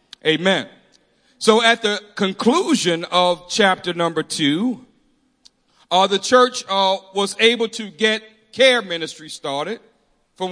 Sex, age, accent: male, 40-59, American